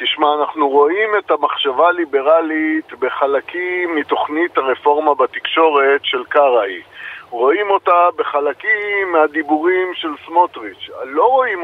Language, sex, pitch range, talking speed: Hebrew, male, 165-215 Hz, 105 wpm